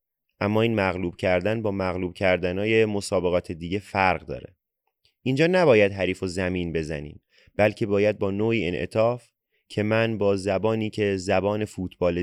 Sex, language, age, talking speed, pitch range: male, Persian, 30-49, 145 wpm, 90-105 Hz